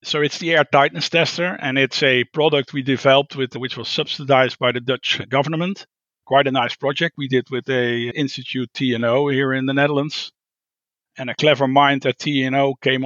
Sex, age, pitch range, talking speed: male, 50-69, 130-150 Hz, 190 wpm